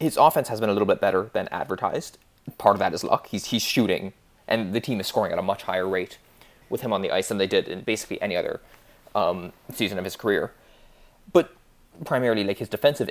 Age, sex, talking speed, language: 20-39, male, 230 wpm, English